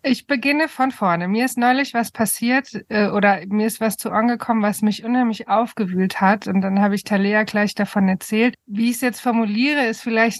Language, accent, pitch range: German, German, 205-240 Hz